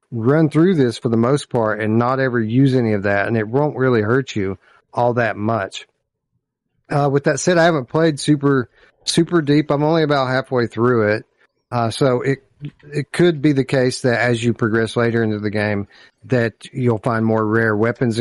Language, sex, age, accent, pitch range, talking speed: English, male, 40-59, American, 110-135 Hz, 200 wpm